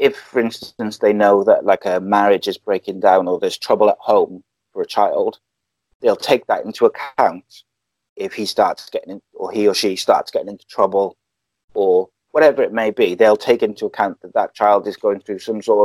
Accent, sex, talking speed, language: British, male, 205 wpm, English